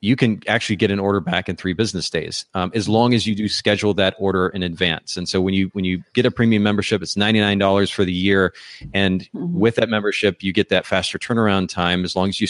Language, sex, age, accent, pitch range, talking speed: English, male, 30-49, American, 95-110 Hz, 245 wpm